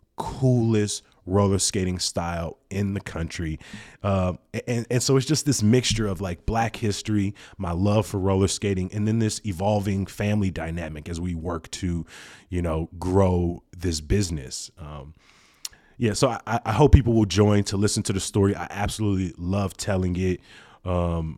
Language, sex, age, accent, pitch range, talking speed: English, male, 30-49, American, 90-105 Hz, 165 wpm